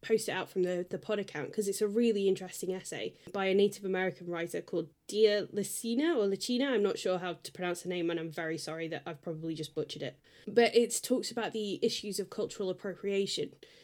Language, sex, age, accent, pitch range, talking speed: English, female, 10-29, British, 180-210 Hz, 220 wpm